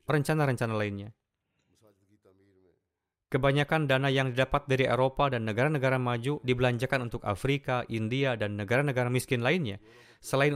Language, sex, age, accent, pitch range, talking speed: Indonesian, male, 20-39, native, 115-140 Hz, 115 wpm